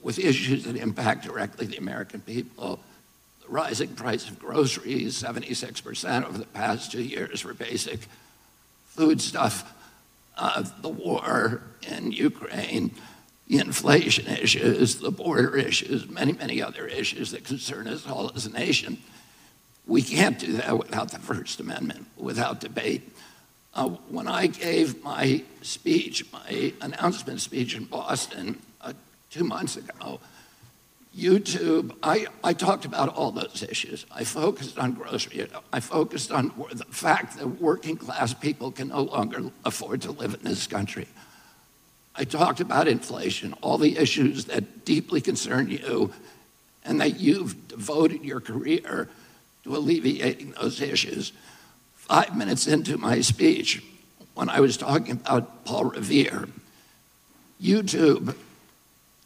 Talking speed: 135 wpm